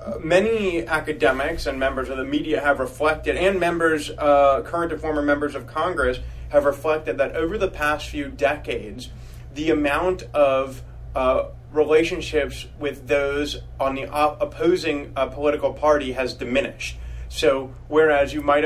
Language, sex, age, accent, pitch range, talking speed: English, male, 30-49, American, 130-155 Hz, 150 wpm